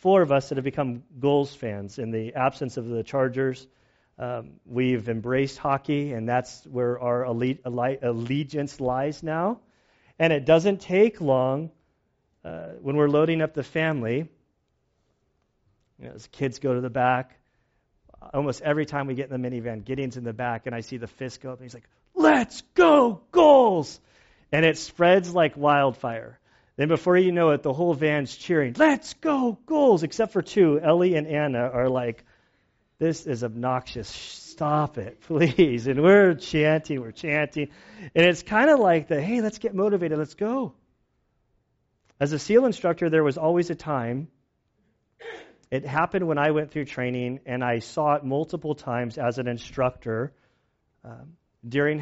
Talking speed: 170 wpm